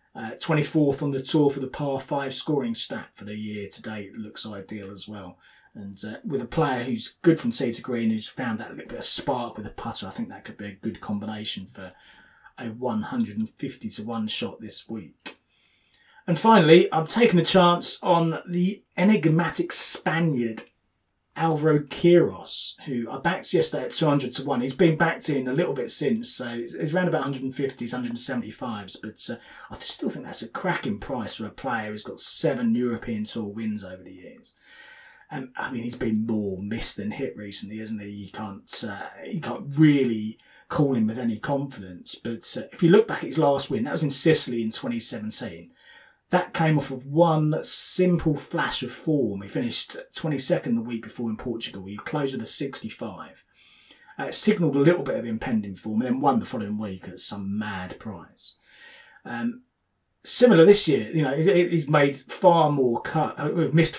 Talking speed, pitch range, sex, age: 190 wpm, 110-175 Hz, male, 30-49